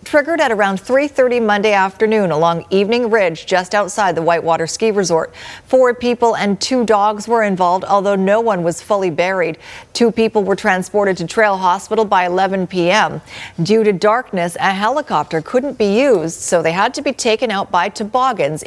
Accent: American